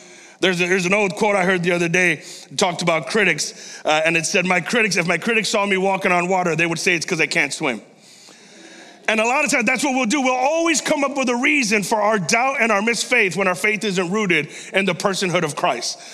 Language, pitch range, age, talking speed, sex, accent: English, 170-225 Hz, 30-49, 255 wpm, male, American